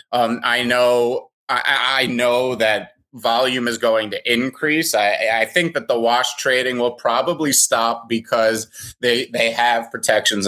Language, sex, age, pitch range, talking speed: English, male, 30-49, 110-135 Hz, 155 wpm